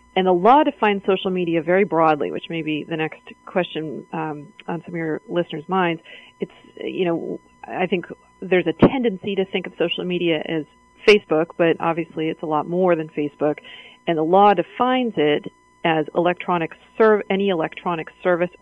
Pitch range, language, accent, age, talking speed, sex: 160-195 Hz, English, American, 40-59, 175 wpm, female